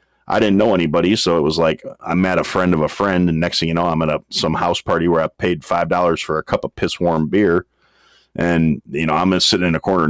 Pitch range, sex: 85-95 Hz, male